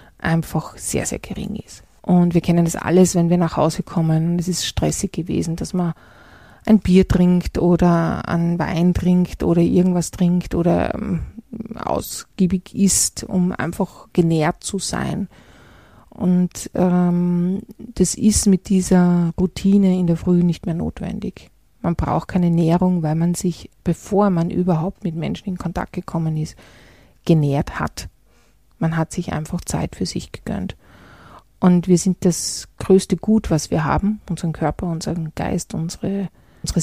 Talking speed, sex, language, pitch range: 155 wpm, female, German, 165-190 Hz